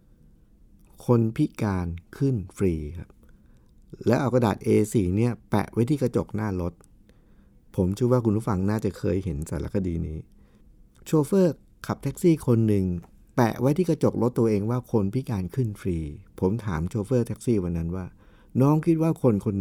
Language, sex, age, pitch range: Thai, male, 60-79, 100-130 Hz